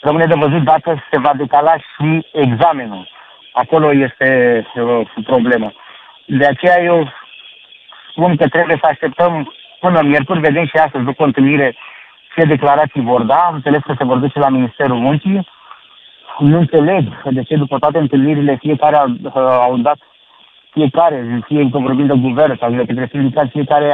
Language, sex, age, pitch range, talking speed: Romanian, male, 50-69, 140-165 Hz, 155 wpm